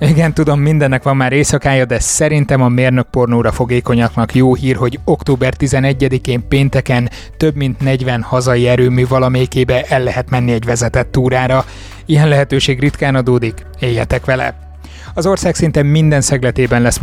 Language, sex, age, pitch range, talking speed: Hungarian, male, 20-39, 125-145 Hz, 150 wpm